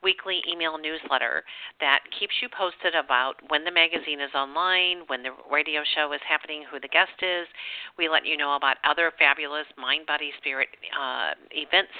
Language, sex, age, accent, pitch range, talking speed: English, female, 50-69, American, 145-175 Hz, 175 wpm